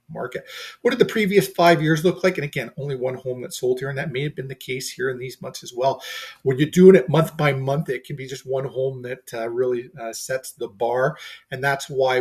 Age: 40-59